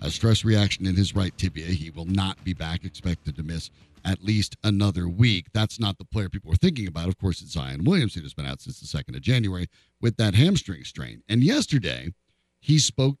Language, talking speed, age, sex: English, 220 wpm, 60-79, male